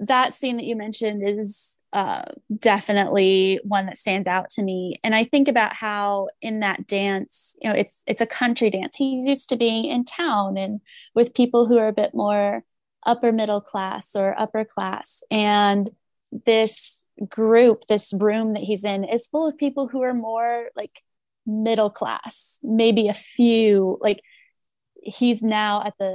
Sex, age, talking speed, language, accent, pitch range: female, 20-39, 170 wpm, English, American, 190-230 Hz